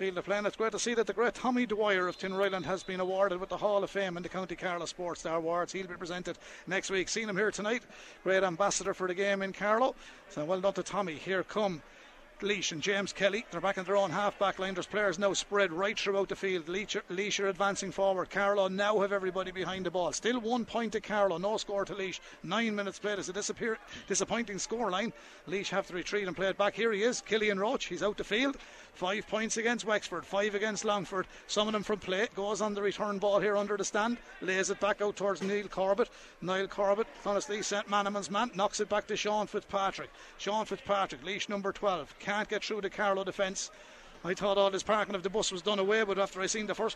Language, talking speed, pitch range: English, 235 wpm, 190-205 Hz